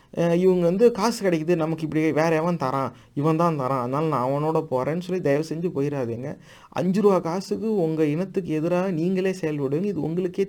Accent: native